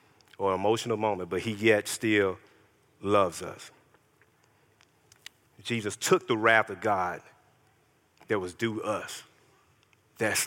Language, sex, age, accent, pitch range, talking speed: English, male, 40-59, American, 115-185 Hz, 115 wpm